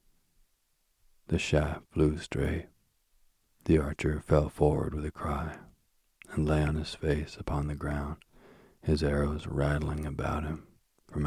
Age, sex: 40-59, male